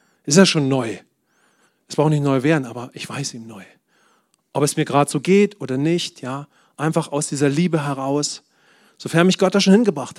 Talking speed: 200 wpm